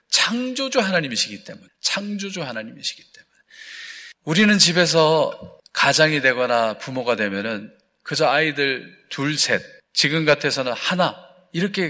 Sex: male